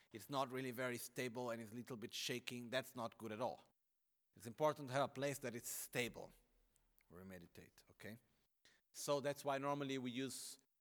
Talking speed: 195 wpm